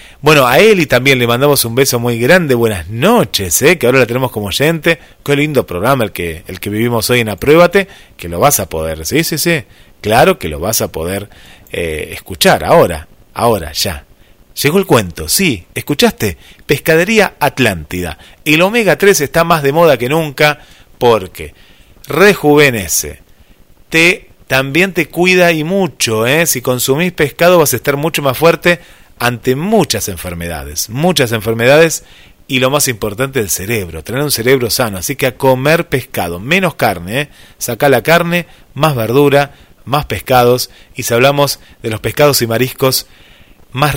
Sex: male